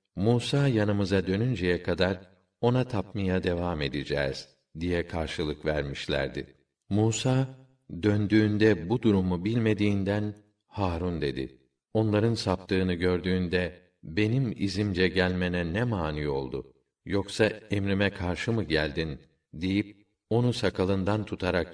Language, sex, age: Turkish, male, 50-69